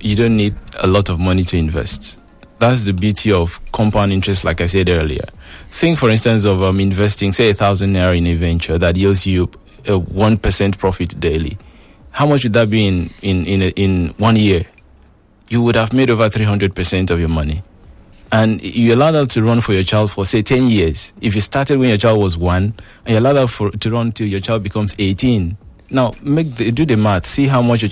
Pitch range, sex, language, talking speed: 95-120 Hz, male, English, 220 wpm